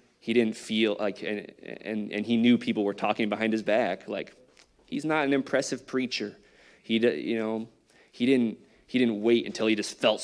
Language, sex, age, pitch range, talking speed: English, male, 20-39, 100-120 Hz, 195 wpm